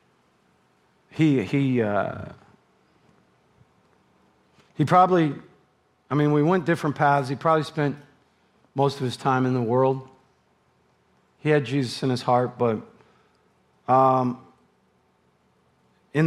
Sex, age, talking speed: male, 40-59, 110 wpm